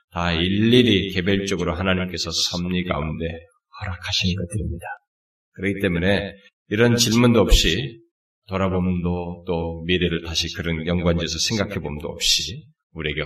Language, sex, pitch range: Korean, male, 85-110 Hz